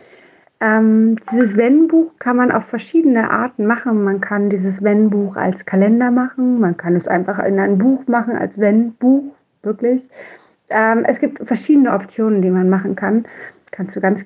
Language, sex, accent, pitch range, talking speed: German, female, German, 195-250 Hz, 165 wpm